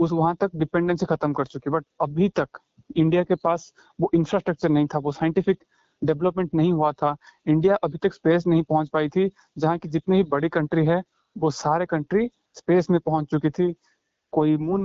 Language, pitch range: Hindi, 150-175 Hz